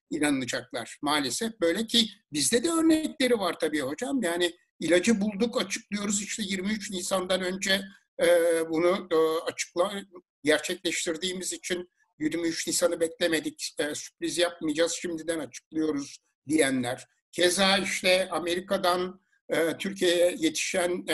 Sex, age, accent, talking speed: male, 60-79, native, 100 wpm